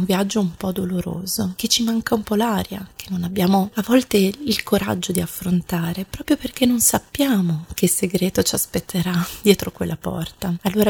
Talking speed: 170 wpm